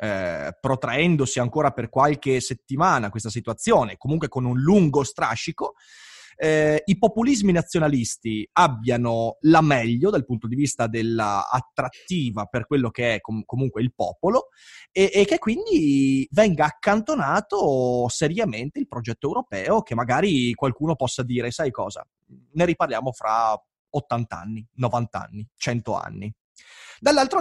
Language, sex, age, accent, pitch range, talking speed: Italian, male, 30-49, native, 125-195 Hz, 130 wpm